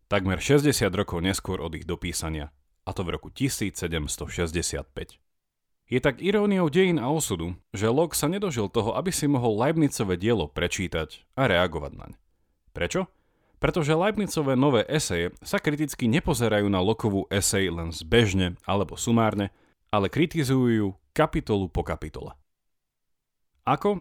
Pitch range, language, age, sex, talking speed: 85-140 Hz, Slovak, 40-59, male, 130 wpm